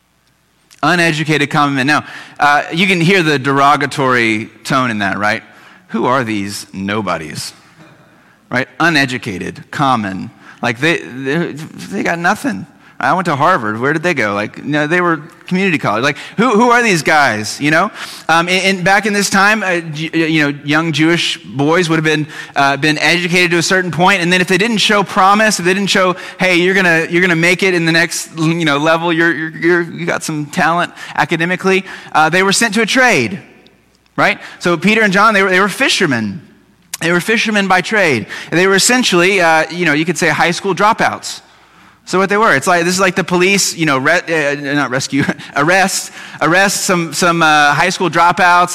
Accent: American